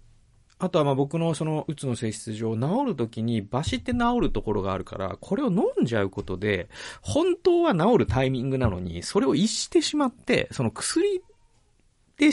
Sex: male